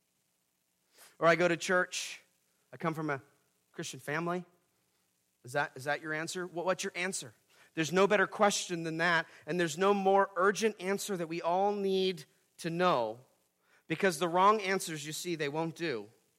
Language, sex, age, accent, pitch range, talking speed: English, male, 40-59, American, 115-180 Hz, 170 wpm